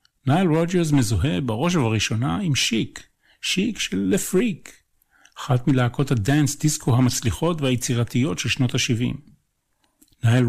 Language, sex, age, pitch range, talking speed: Hebrew, male, 50-69, 115-145 Hz, 120 wpm